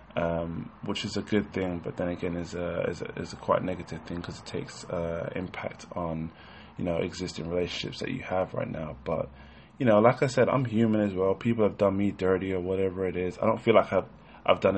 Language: English